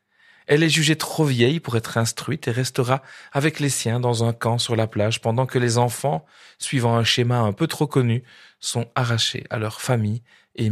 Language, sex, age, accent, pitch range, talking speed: French, male, 40-59, French, 110-135 Hz, 200 wpm